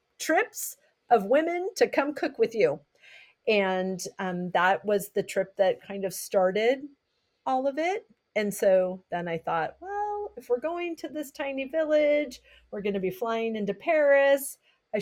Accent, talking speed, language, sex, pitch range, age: American, 170 wpm, English, female, 200-280 Hz, 40-59